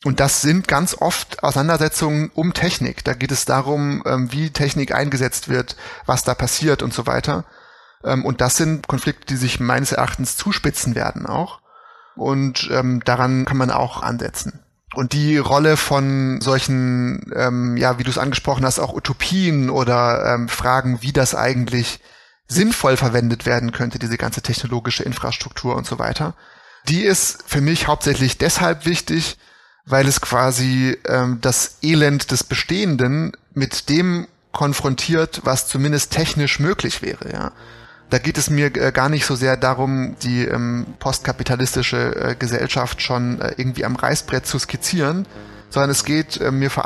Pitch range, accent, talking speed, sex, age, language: 125-150 Hz, German, 155 wpm, male, 30-49, German